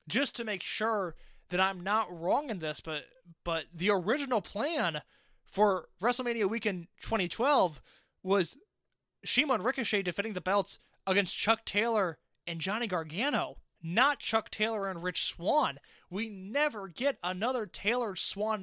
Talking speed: 135 wpm